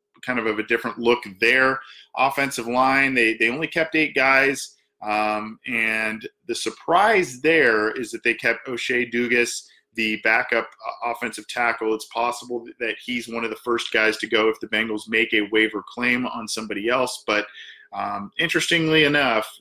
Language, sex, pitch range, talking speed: English, male, 110-135 Hz, 170 wpm